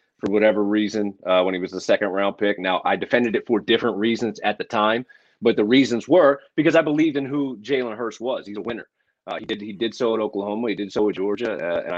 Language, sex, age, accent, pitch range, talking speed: English, male, 30-49, American, 95-120 Hz, 250 wpm